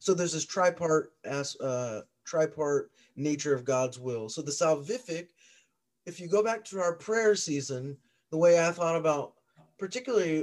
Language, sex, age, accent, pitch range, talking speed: English, male, 30-49, American, 135-165 Hz, 150 wpm